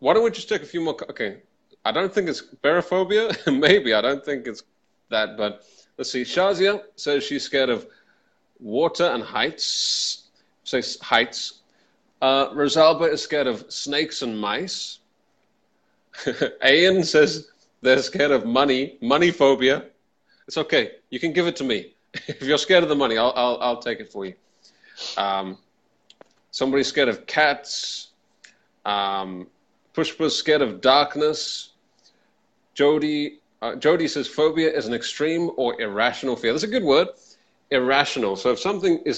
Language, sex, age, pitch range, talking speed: English, male, 30-49, 115-155 Hz, 155 wpm